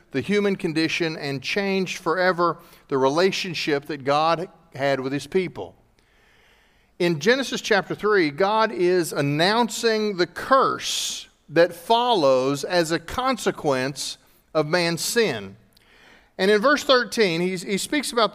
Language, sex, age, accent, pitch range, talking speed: English, male, 40-59, American, 160-220 Hz, 130 wpm